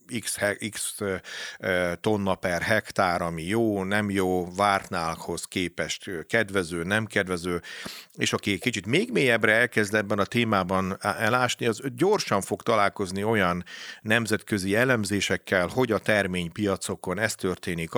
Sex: male